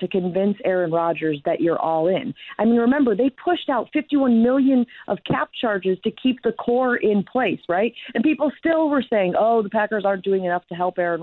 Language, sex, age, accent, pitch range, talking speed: English, female, 40-59, American, 160-225 Hz, 215 wpm